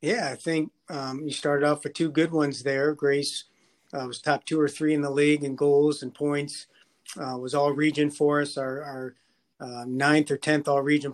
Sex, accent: male, American